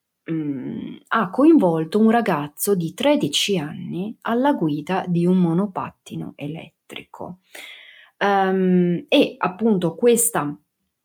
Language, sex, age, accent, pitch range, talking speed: Italian, female, 30-49, native, 160-195 Hz, 85 wpm